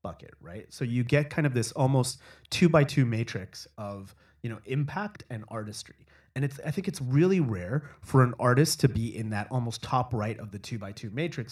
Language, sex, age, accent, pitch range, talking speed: English, male, 30-49, American, 110-140 Hz, 220 wpm